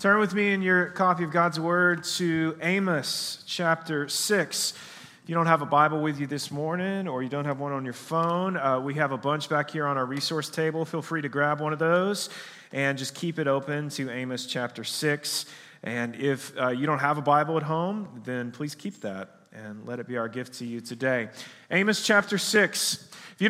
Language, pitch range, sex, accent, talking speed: English, 140-180 Hz, male, American, 215 wpm